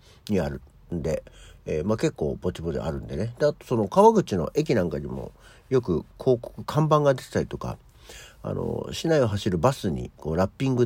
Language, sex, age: Japanese, male, 50-69